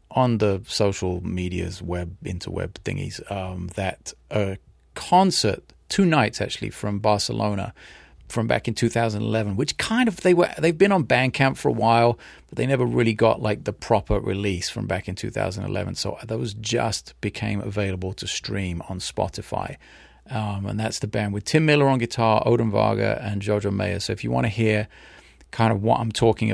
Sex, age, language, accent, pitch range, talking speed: male, 30-49, English, British, 95-115 Hz, 180 wpm